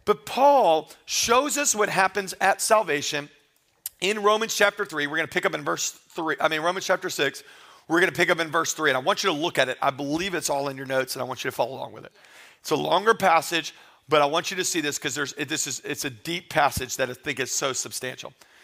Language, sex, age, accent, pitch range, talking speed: English, male, 40-59, American, 145-200 Hz, 260 wpm